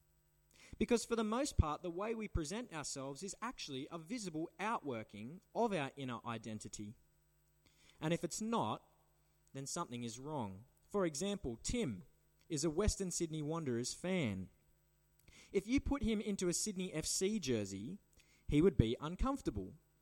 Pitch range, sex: 135-195 Hz, male